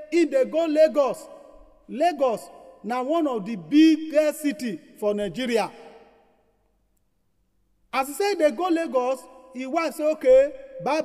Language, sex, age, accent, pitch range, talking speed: English, male, 40-59, Nigerian, 220-300 Hz, 130 wpm